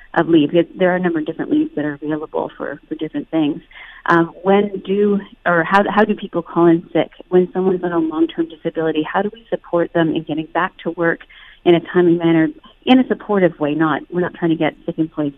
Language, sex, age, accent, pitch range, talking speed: English, female, 30-49, American, 160-200 Hz, 230 wpm